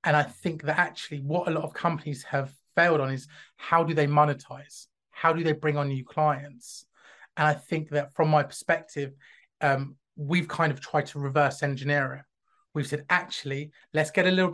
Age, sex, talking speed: 30-49, male, 200 wpm